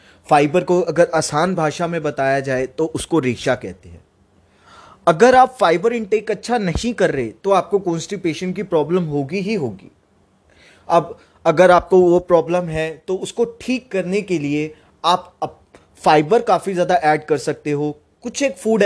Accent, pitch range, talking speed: native, 150-200 Hz, 165 wpm